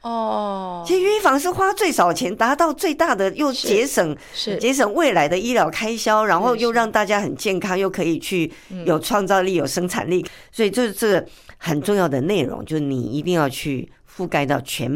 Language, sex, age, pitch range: Chinese, female, 50-69, 140-200 Hz